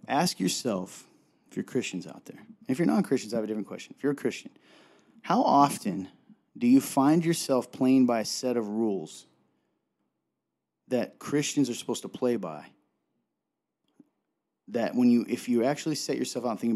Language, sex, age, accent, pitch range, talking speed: English, male, 30-49, American, 105-140 Hz, 175 wpm